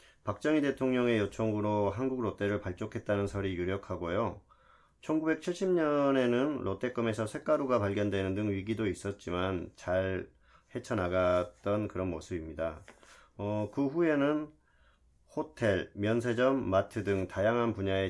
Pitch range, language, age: 95-125 Hz, Korean, 40-59